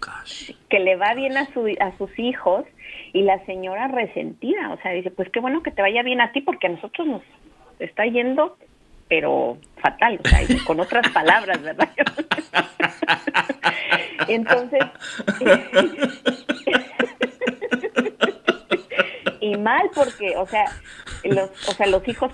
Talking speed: 135 wpm